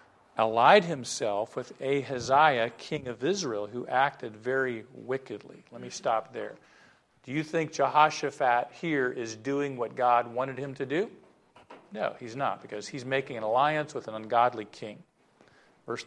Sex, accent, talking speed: male, American, 155 wpm